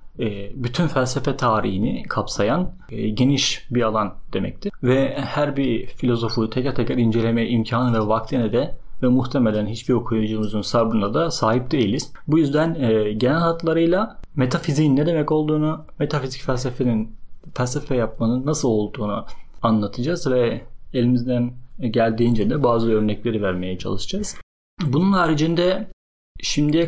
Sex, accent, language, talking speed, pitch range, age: male, native, Turkish, 120 wpm, 120-150 Hz, 40-59